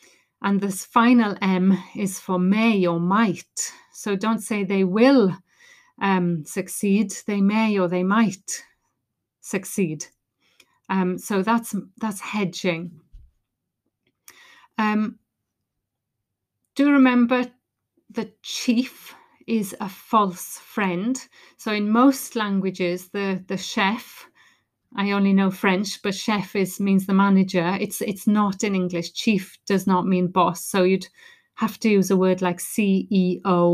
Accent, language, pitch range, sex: British, English, 185-230 Hz, female